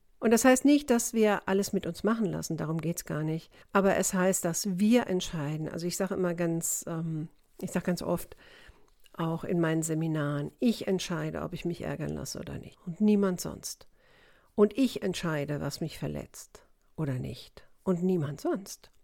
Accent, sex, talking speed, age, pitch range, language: German, female, 185 wpm, 50-69, 170-205 Hz, German